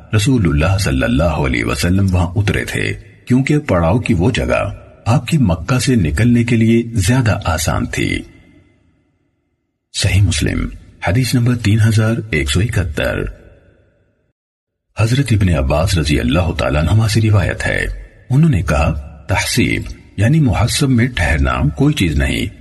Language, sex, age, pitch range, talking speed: Urdu, male, 50-69, 80-120 Hz, 135 wpm